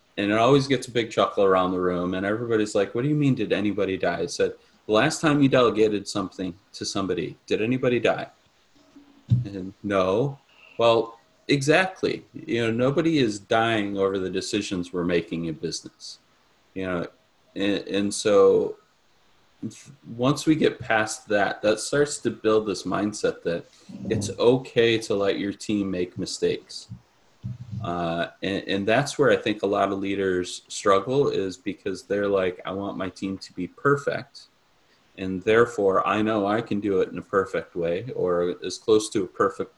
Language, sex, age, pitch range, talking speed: English, male, 30-49, 95-125 Hz, 175 wpm